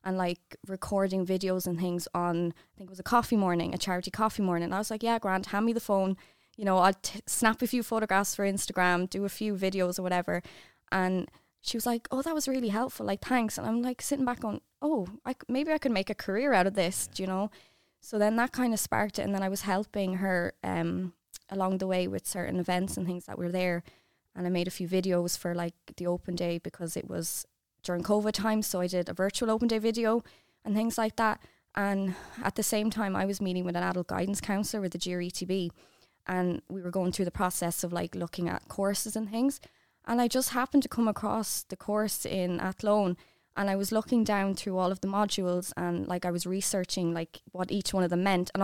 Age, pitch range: 20-39, 180-220 Hz